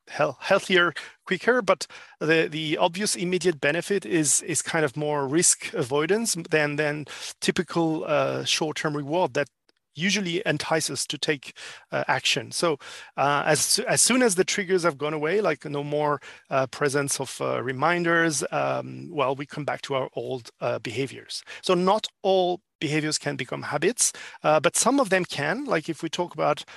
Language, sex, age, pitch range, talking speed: English, male, 40-59, 145-180 Hz, 170 wpm